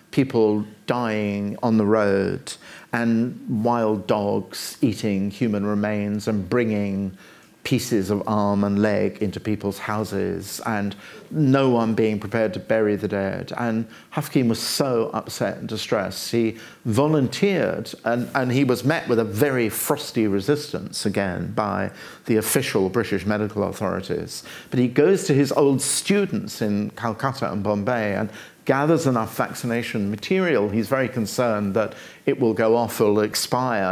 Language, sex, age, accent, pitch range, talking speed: English, male, 50-69, British, 105-130 Hz, 145 wpm